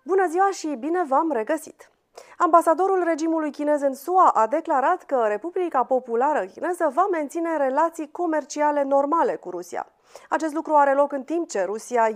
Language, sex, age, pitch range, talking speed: Romanian, female, 30-49, 240-325 Hz, 160 wpm